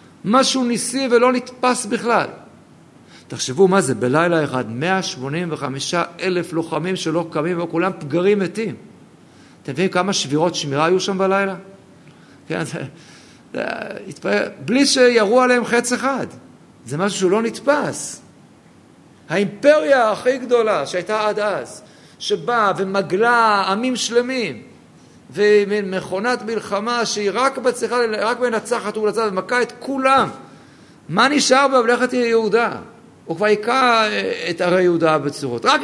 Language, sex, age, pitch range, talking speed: Hebrew, male, 50-69, 180-240 Hz, 125 wpm